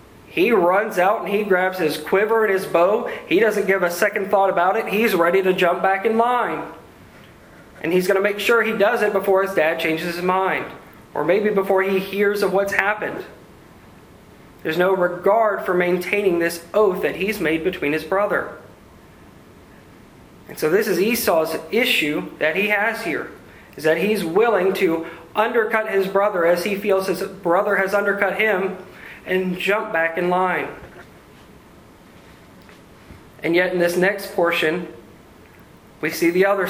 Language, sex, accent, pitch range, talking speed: English, male, American, 170-205 Hz, 170 wpm